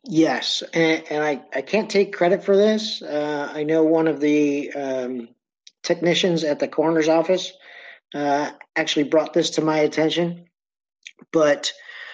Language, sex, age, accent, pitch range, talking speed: English, male, 40-59, American, 135-160 Hz, 150 wpm